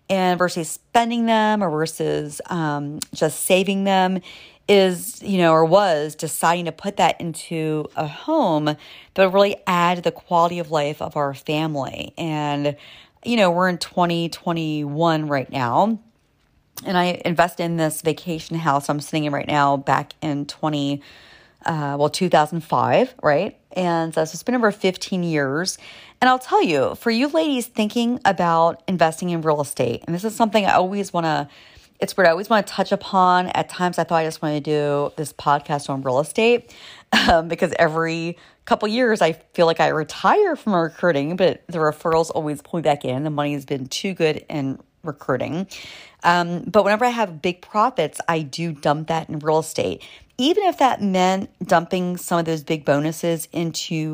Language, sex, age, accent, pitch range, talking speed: English, female, 40-59, American, 150-185 Hz, 185 wpm